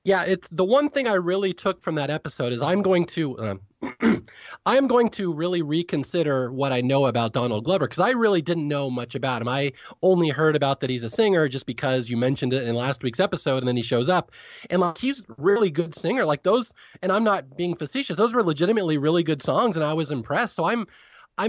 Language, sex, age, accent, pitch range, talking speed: English, male, 30-49, American, 140-190 Hz, 235 wpm